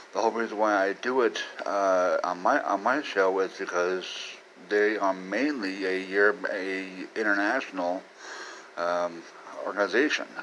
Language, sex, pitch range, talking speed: English, male, 95-110 Hz, 140 wpm